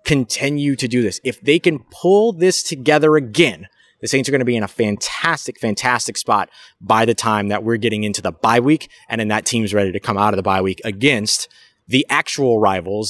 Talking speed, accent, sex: 220 wpm, American, male